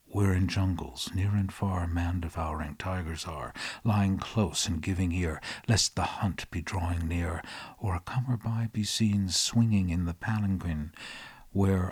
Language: English